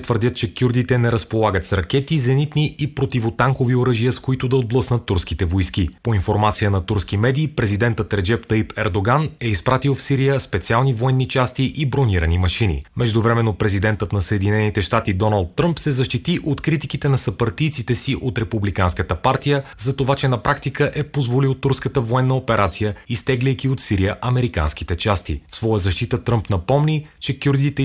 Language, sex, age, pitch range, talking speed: Bulgarian, male, 30-49, 100-130 Hz, 160 wpm